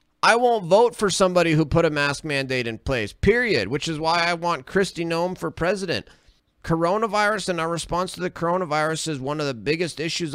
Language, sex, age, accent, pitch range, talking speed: English, male, 30-49, American, 110-155 Hz, 205 wpm